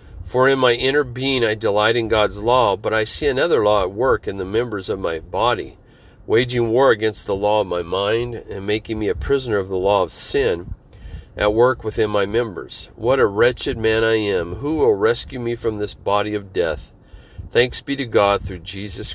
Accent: American